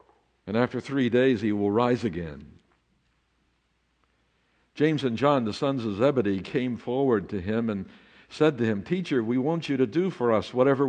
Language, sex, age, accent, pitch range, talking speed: English, male, 60-79, American, 85-130 Hz, 175 wpm